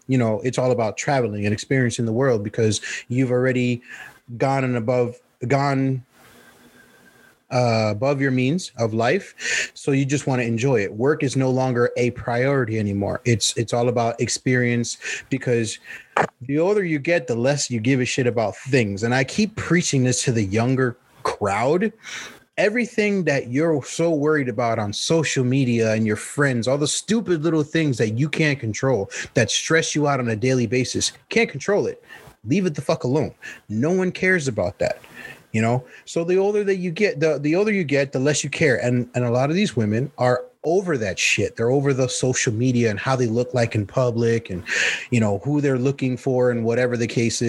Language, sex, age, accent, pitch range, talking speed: English, male, 30-49, American, 120-150 Hz, 200 wpm